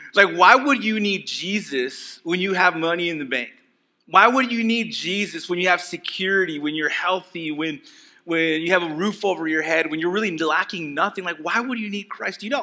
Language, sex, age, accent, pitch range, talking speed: English, male, 30-49, American, 150-185 Hz, 230 wpm